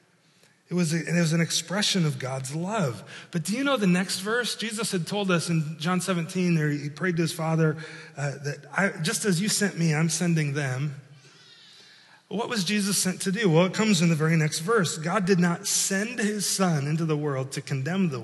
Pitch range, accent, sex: 135-185 Hz, American, male